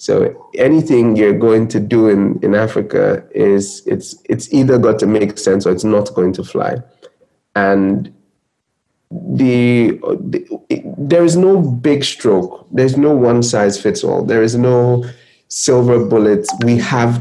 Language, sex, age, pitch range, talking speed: English, male, 30-49, 105-125 Hz, 155 wpm